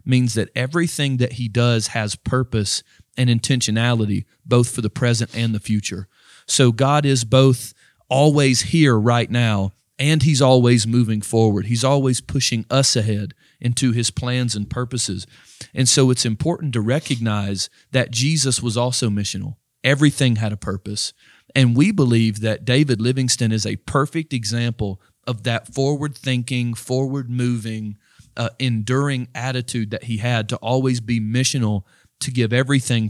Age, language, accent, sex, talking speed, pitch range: 40-59, English, American, male, 150 wpm, 110-130 Hz